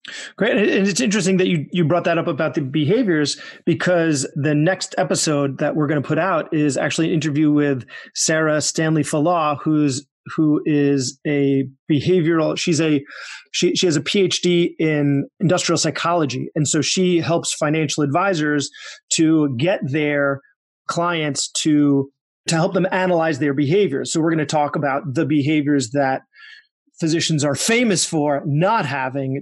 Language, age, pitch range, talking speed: English, 30-49, 140-165 Hz, 160 wpm